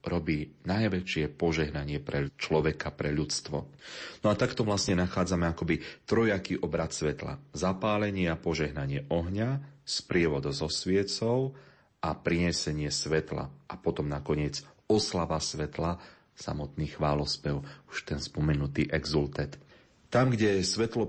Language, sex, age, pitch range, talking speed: Slovak, male, 30-49, 75-95 Hz, 115 wpm